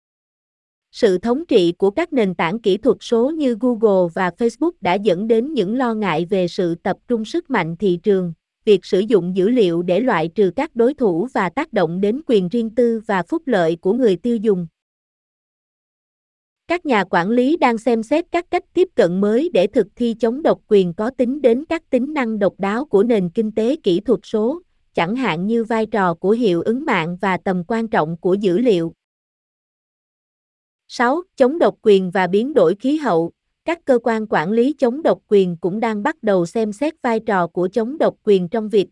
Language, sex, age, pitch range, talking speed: Vietnamese, female, 20-39, 190-245 Hz, 205 wpm